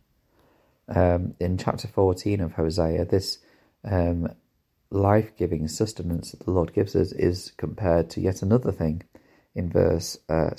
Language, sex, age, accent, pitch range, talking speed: English, male, 30-49, British, 80-100 Hz, 135 wpm